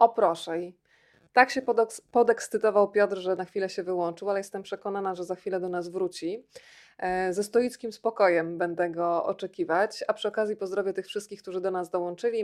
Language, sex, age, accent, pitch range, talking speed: Polish, female, 20-39, native, 180-210 Hz, 175 wpm